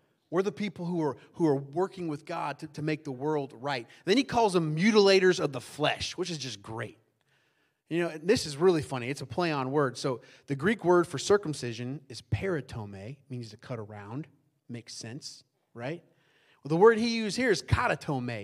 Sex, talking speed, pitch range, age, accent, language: male, 210 wpm, 145-210 Hz, 30-49, American, English